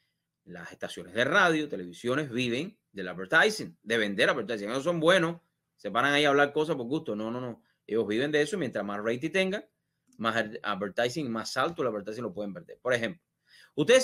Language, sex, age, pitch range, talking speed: English, male, 30-49, 120-185 Hz, 190 wpm